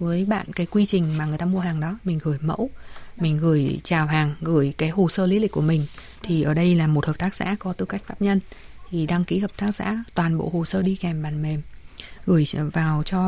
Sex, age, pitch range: female, 20-39, 160-200 Hz